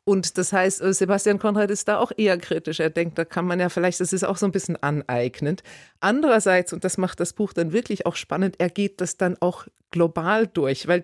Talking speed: 230 wpm